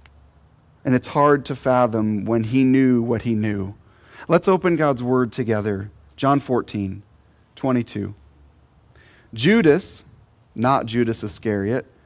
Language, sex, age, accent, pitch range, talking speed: English, male, 30-49, American, 110-165 Hz, 115 wpm